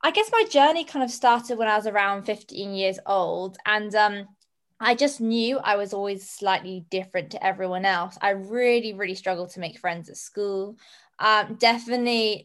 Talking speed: 185 wpm